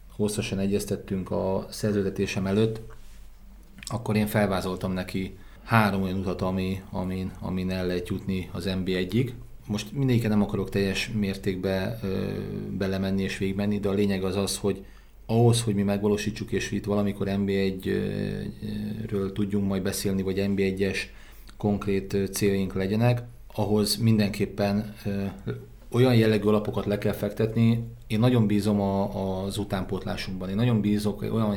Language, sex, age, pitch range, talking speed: Hungarian, male, 40-59, 95-105 Hz, 145 wpm